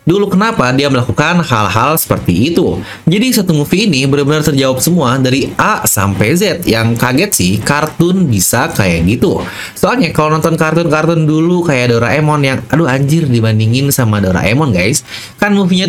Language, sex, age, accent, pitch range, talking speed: English, male, 20-39, Indonesian, 120-165 Hz, 155 wpm